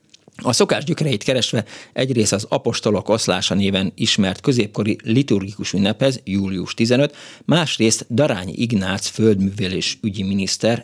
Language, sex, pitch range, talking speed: Hungarian, male, 95-120 Hz, 110 wpm